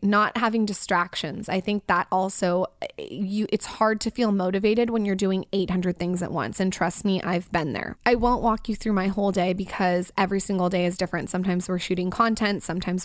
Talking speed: 205 wpm